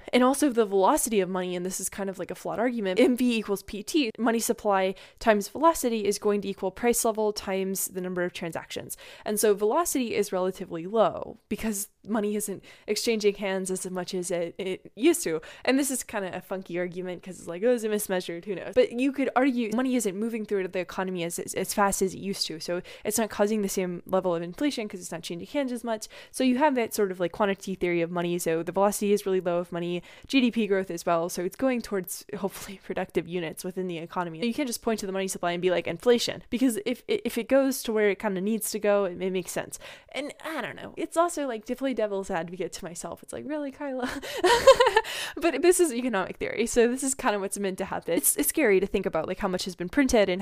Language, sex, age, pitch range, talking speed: English, female, 10-29, 185-245 Hz, 250 wpm